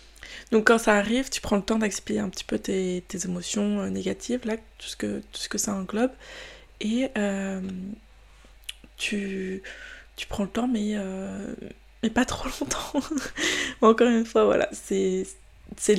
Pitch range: 190-225 Hz